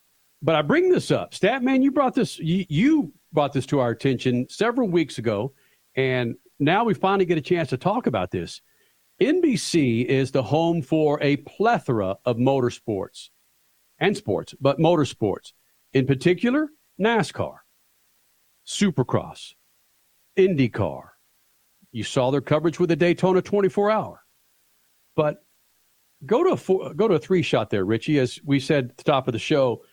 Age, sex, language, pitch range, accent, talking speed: 50-69, male, English, 125-180 Hz, American, 155 wpm